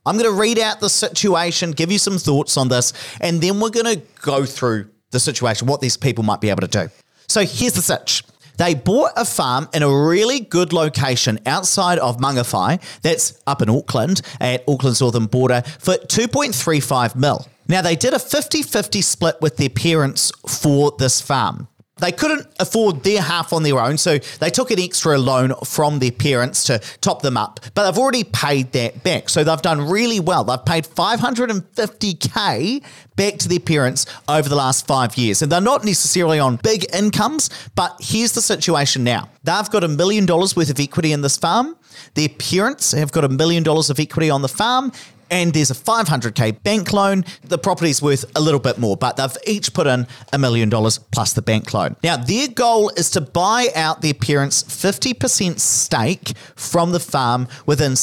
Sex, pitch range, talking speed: male, 130-195 Hz, 195 wpm